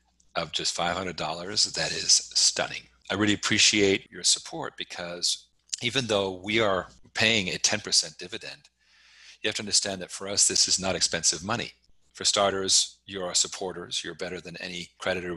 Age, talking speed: 40-59, 165 wpm